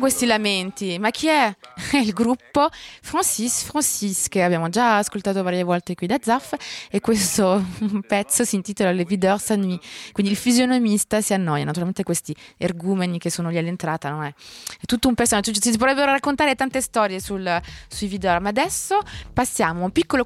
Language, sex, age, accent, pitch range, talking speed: Italian, female, 20-39, native, 180-250 Hz, 175 wpm